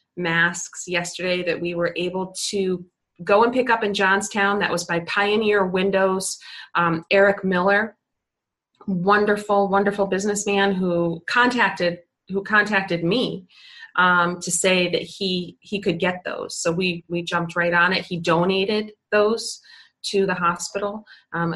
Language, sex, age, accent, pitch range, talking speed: English, female, 30-49, American, 175-215 Hz, 145 wpm